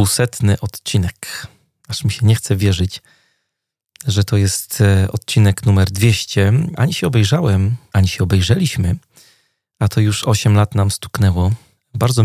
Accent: native